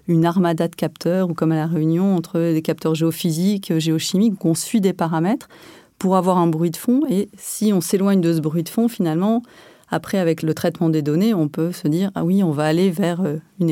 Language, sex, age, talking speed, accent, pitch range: French, female, 30-49, 225 wpm, French, 165-195 Hz